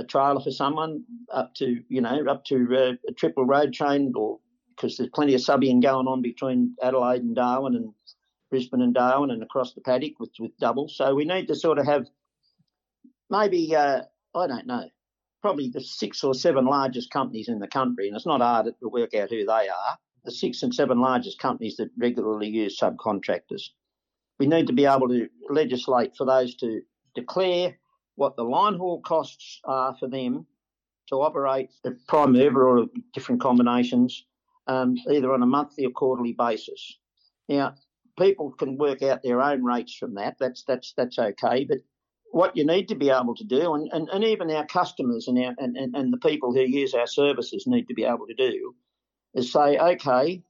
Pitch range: 125-180 Hz